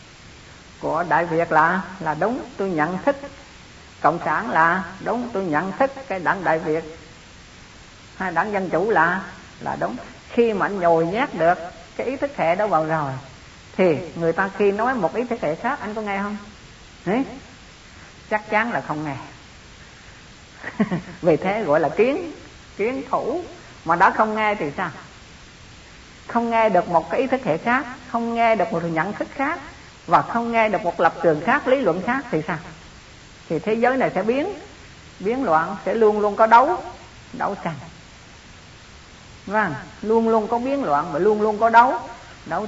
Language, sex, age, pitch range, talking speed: Vietnamese, female, 50-69, 165-230 Hz, 185 wpm